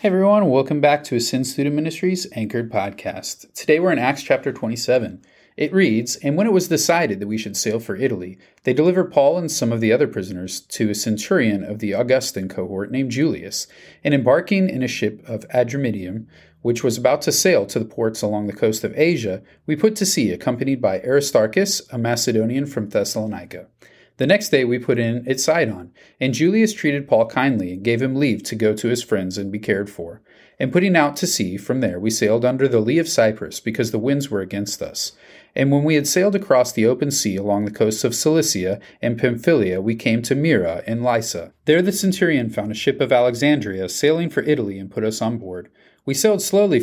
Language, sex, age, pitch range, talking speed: English, male, 30-49, 110-150 Hz, 210 wpm